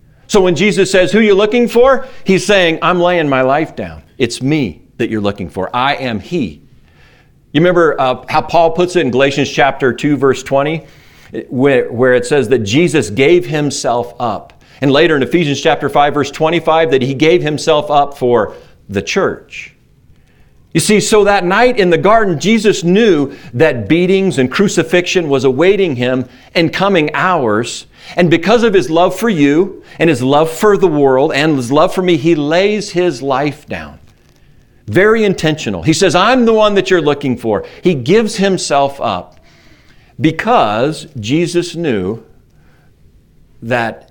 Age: 40-59